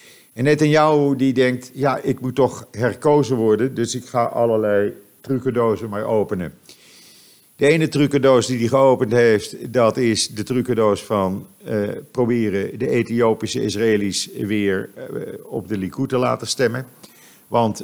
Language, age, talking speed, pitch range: Dutch, 50-69, 145 wpm, 105-125 Hz